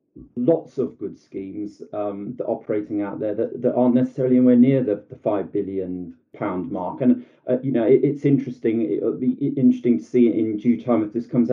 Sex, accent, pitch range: male, British, 110-135 Hz